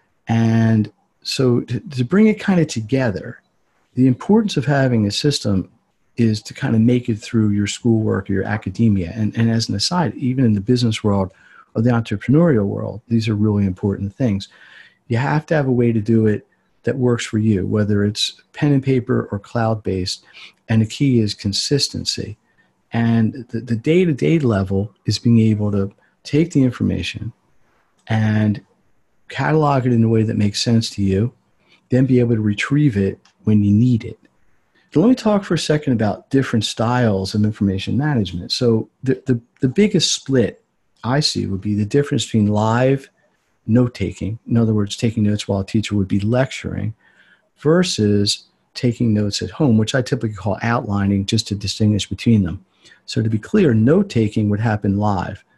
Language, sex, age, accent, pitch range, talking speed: English, male, 40-59, American, 105-125 Hz, 180 wpm